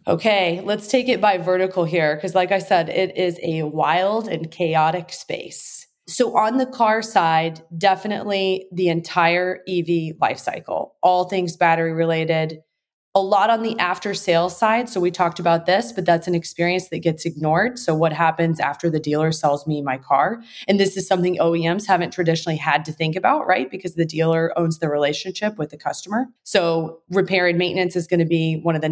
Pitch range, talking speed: 165-190 Hz, 195 wpm